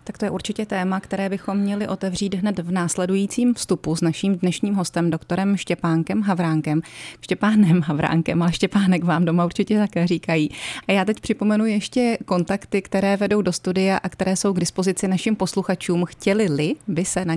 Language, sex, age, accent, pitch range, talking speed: Czech, female, 30-49, native, 165-195 Hz, 175 wpm